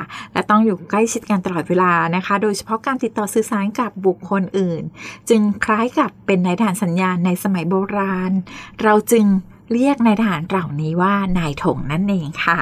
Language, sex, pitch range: Thai, female, 185-225 Hz